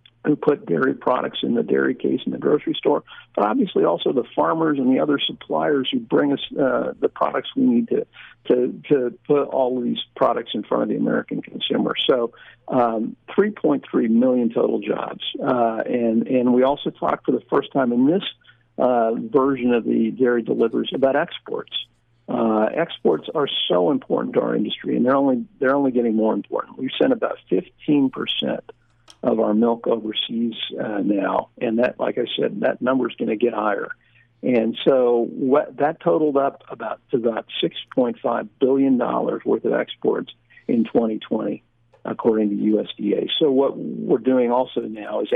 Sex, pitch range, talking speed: male, 115-155 Hz, 180 wpm